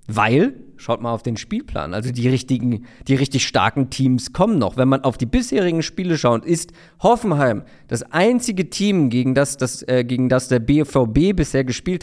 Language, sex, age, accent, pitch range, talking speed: German, male, 40-59, German, 120-155 Hz, 185 wpm